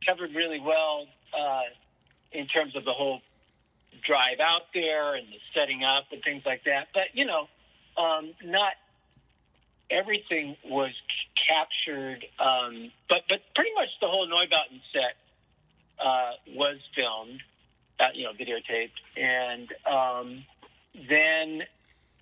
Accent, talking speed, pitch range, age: American, 130 wpm, 130-165 Hz, 50-69